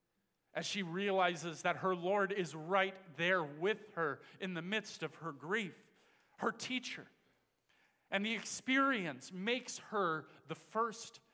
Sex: male